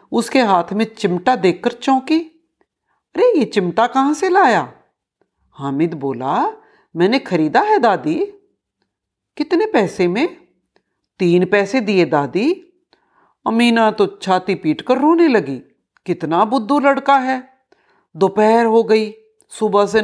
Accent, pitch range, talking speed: native, 175-285 Hz, 120 wpm